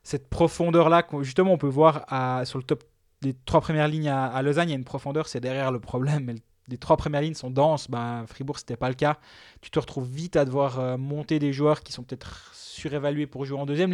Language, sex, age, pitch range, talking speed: French, male, 20-39, 130-160 Hz, 230 wpm